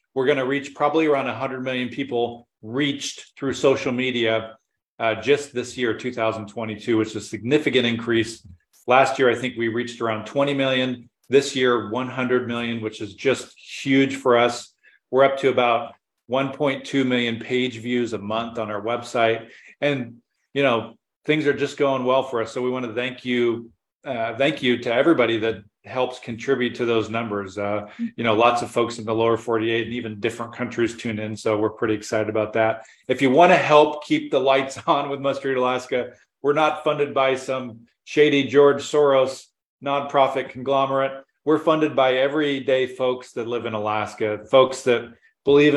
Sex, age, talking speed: male, 40-59, 180 wpm